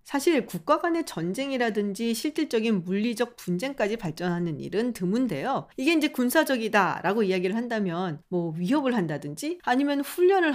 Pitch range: 180-265 Hz